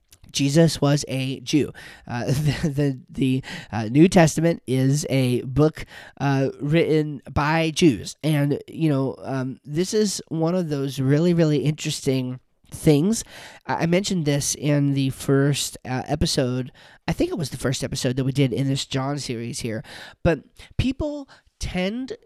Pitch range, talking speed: 130-160 Hz, 155 wpm